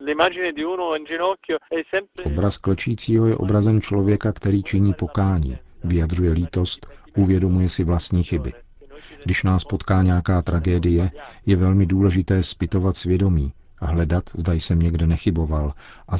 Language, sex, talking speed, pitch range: Czech, male, 115 wpm, 80-95 Hz